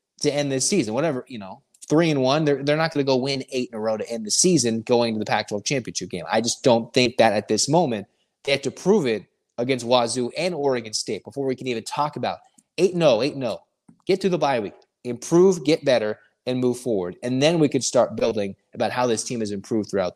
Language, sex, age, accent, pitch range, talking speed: English, male, 20-39, American, 120-160 Hz, 255 wpm